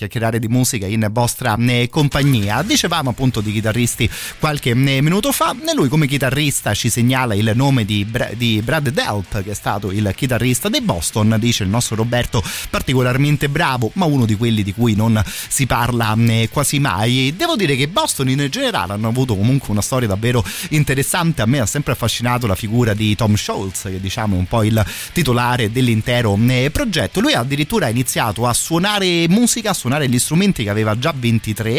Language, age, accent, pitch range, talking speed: Italian, 30-49, native, 110-130 Hz, 180 wpm